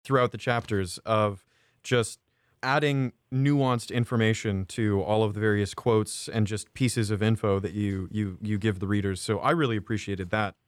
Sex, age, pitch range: male, 30-49, 105-130 Hz